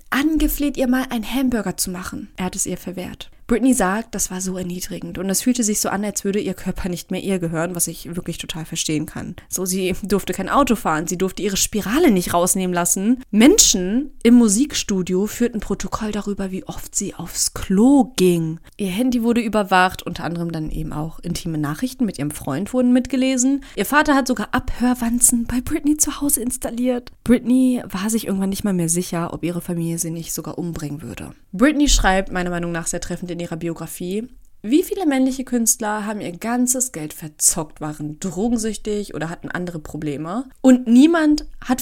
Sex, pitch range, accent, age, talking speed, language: female, 170-245 Hz, German, 20-39, 190 wpm, German